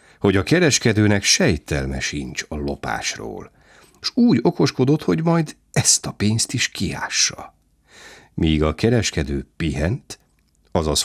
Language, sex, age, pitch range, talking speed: Hungarian, male, 60-79, 75-100 Hz, 120 wpm